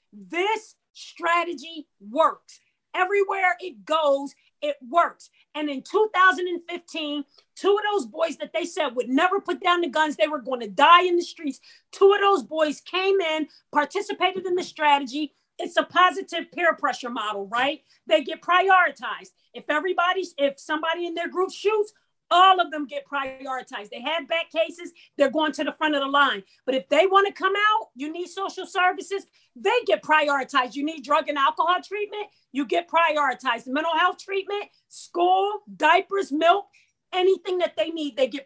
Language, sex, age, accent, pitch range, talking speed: English, female, 40-59, American, 285-365 Hz, 175 wpm